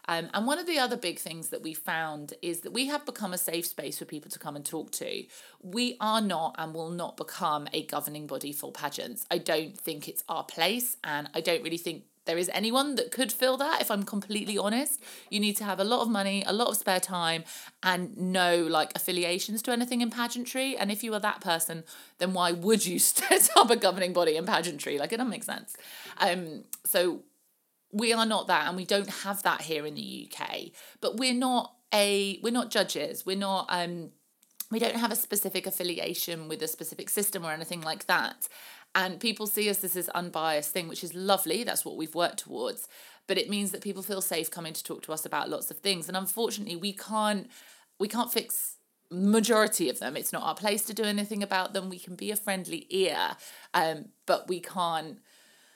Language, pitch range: English, 170-220 Hz